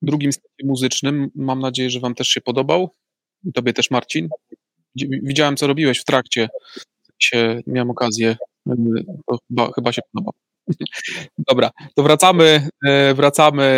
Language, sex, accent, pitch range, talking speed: Polish, male, native, 130-145 Hz, 125 wpm